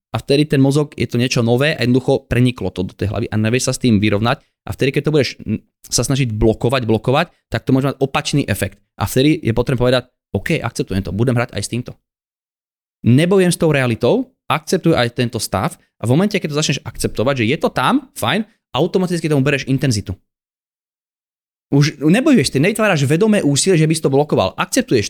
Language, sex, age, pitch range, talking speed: Slovak, male, 20-39, 120-160 Hz, 195 wpm